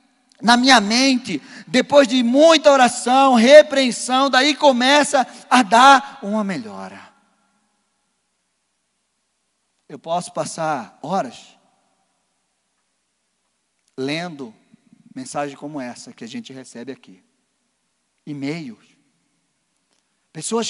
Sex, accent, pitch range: male, Brazilian, 240-315 Hz